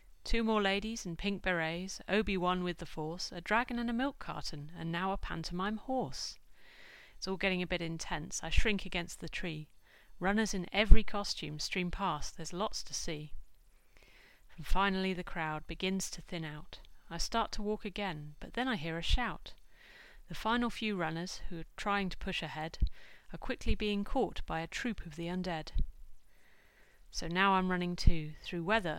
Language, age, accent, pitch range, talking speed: English, 30-49, British, 165-200 Hz, 180 wpm